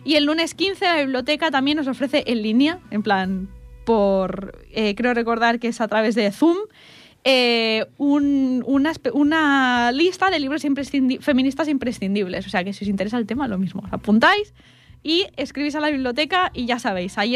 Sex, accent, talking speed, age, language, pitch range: female, Spanish, 185 wpm, 20-39, Italian, 220-290 Hz